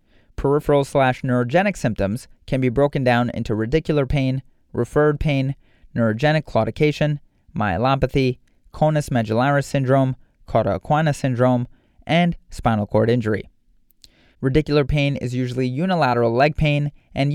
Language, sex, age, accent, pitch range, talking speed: English, male, 30-49, American, 120-145 Hz, 110 wpm